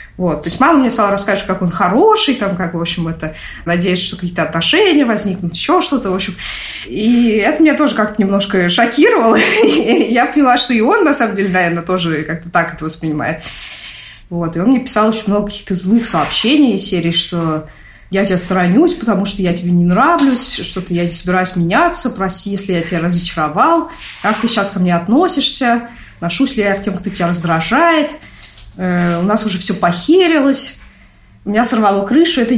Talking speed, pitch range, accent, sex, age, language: 180 wpm, 175-245 Hz, native, female, 20-39, Russian